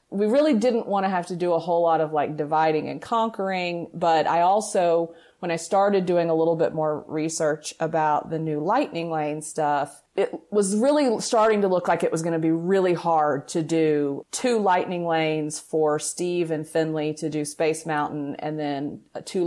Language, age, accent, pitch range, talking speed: English, 30-49, American, 155-195 Hz, 195 wpm